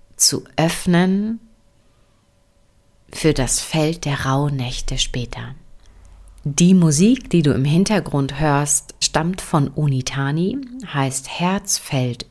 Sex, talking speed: female, 95 wpm